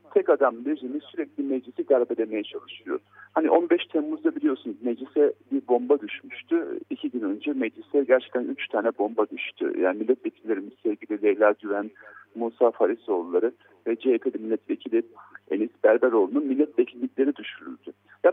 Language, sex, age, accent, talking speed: Turkish, male, 50-69, native, 130 wpm